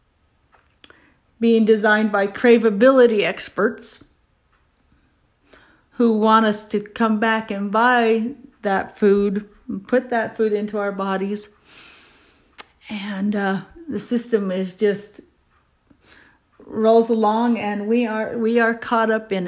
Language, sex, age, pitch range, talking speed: English, female, 40-59, 195-225 Hz, 115 wpm